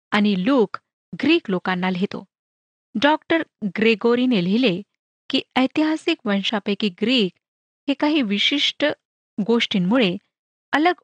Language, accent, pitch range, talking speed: Marathi, native, 200-270 Hz, 90 wpm